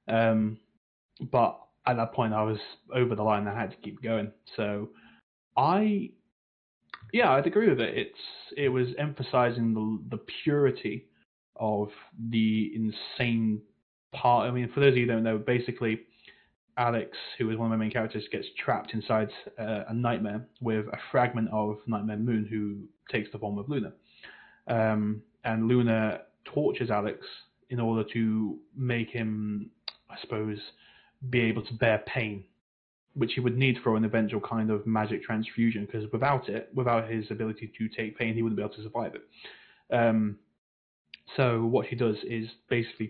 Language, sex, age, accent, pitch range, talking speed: English, male, 20-39, British, 110-120 Hz, 170 wpm